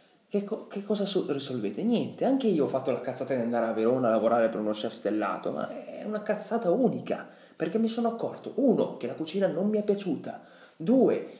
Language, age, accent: Italian, 30-49, native